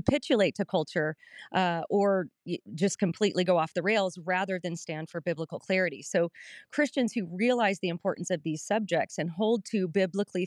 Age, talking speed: 30-49, 170 wpm